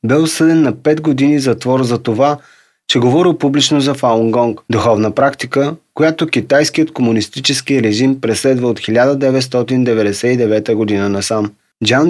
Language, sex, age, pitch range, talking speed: Bulgarian, male, 30-49, 120-140 Hz, 125 wpm